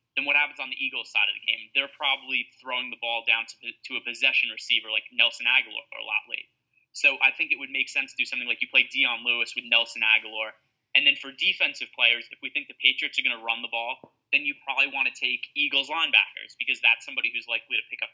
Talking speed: 255 wpm